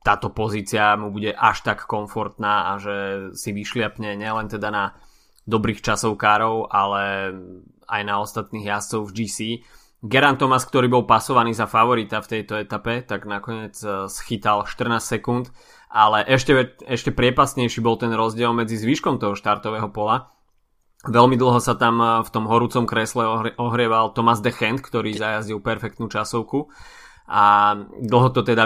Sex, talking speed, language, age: male, 145 wpm, Slovak, 20-39